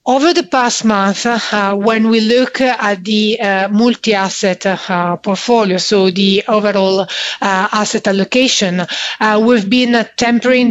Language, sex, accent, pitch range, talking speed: English, female, Italian, 195-225 Hz, 135 wpm